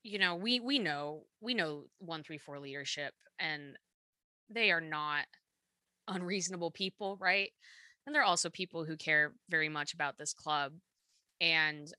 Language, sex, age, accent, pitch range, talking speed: English, female, 20-39, American, 155-195 Hz, 155 wpm